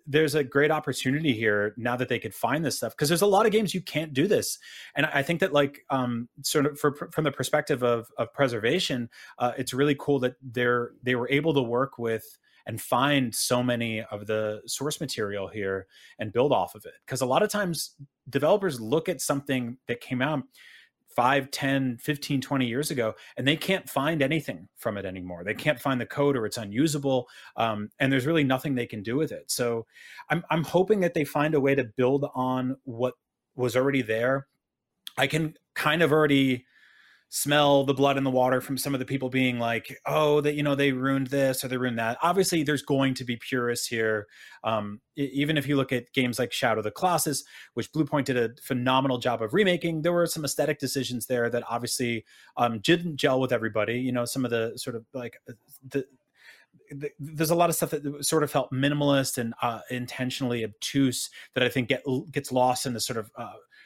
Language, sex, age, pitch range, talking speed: English, male, 30-49, 120-150 Hz, 215 wpm